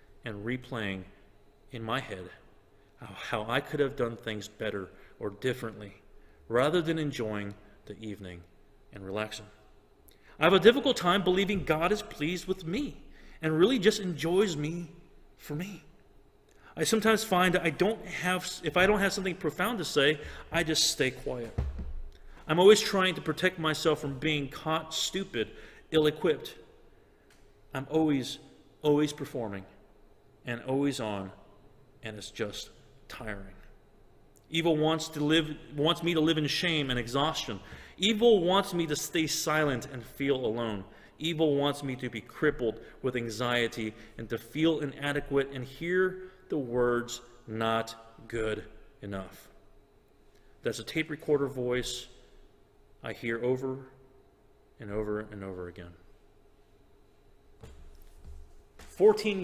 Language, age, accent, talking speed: English, 40-59, American, 135 wpm